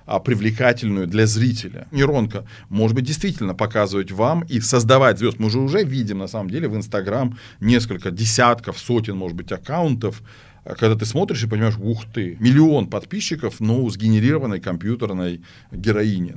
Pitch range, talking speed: 100-120 Hz, 150 wpm